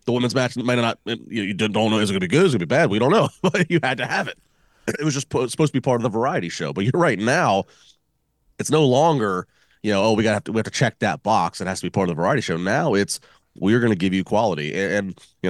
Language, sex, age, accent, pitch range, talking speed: English, male, 30-49, American, 90-115 Hz, 300 wpm